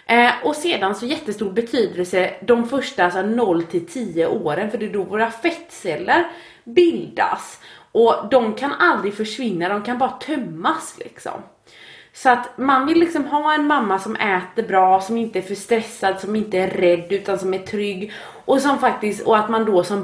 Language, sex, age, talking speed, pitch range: Swedish, female, 30-49, 175 wpm, 190-270 Hz